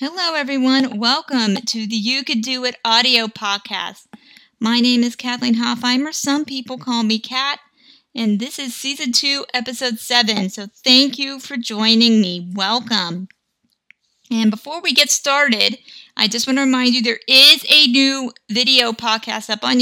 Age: 30-49